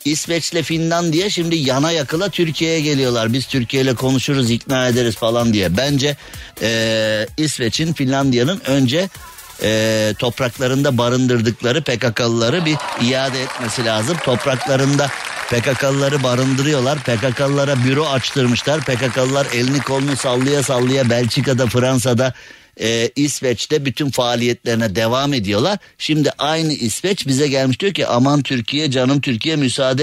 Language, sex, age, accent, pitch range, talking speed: Turkish, male, 60-79, native, 120-145 Hz, 115 wpm